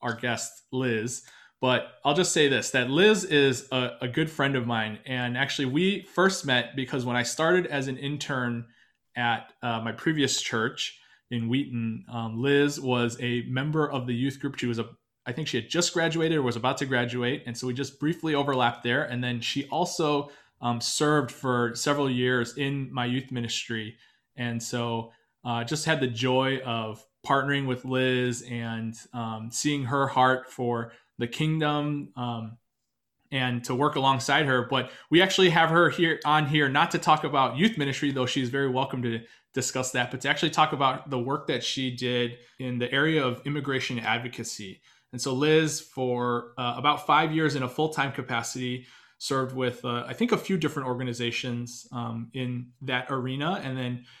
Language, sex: English, male